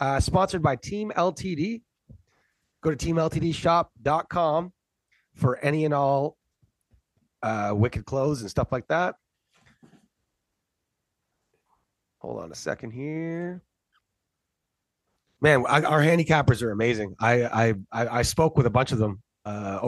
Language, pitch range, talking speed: English, 125-195 Hz, 120 wpm